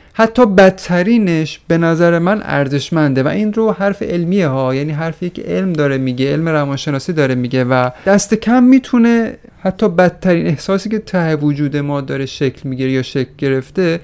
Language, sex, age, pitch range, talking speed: Persian, male, 30-49, 140-195 Hz, 165 wpm